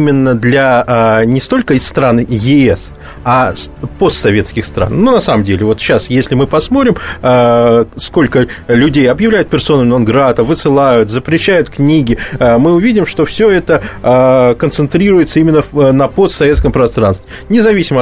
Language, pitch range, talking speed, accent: Russian, 125-170 Hz, 150 wpm, native